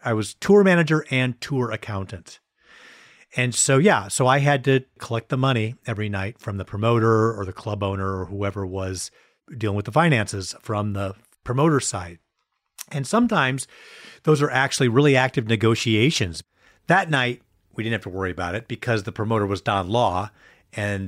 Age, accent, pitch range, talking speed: 40-59, American, 105-130 Hz, 175 wpm